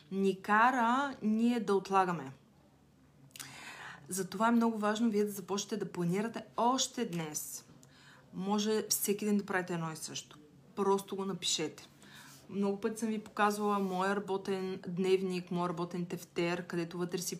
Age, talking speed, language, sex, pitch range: 20-39, 140 wpm, Bulgarian, female, 175-210 Hz